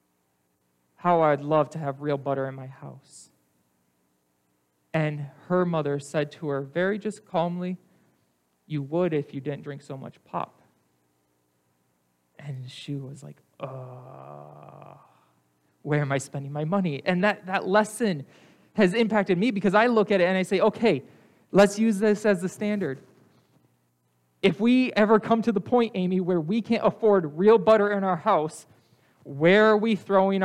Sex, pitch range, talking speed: male, 130-205 Hz, 160 wpm